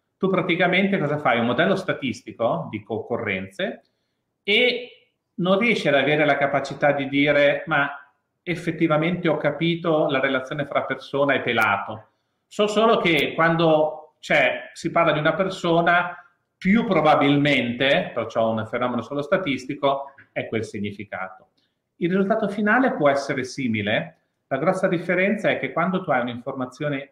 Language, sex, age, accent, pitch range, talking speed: Italian, male, 40-59, native, 120-155 Hz, 140 wpm